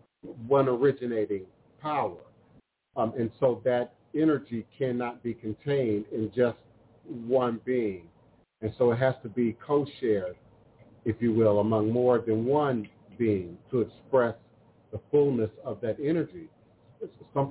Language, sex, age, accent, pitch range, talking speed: English, male, 50-69, American, 110-135 Hz, 130 wpm